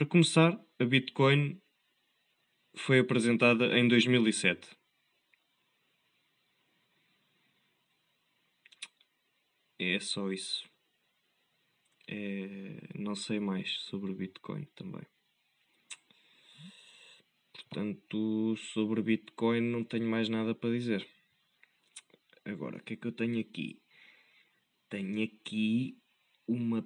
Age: 20-39